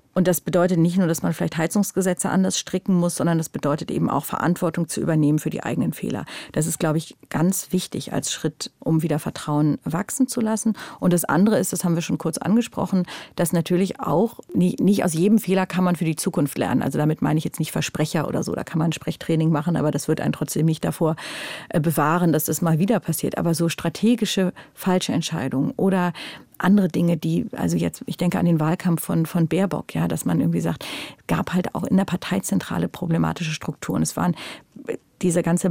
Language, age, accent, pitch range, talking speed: German, 50-69, German, 160-195 Hz, 210 wpm